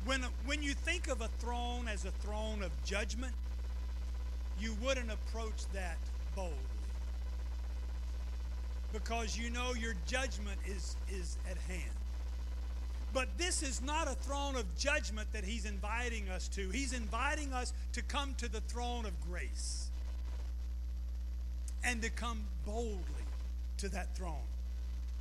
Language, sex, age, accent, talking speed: English, male, 50-69, American, 135 wpm